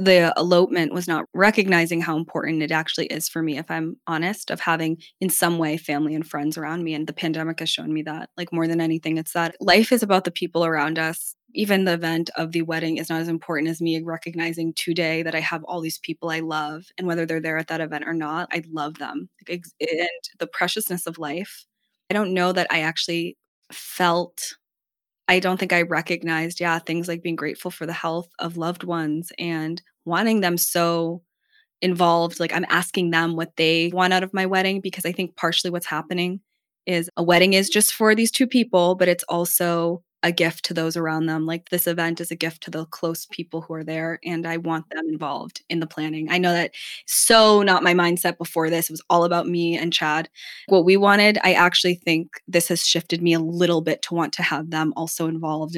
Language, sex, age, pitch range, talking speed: English, female, 20-39, 160-175 Hz, 220 wpm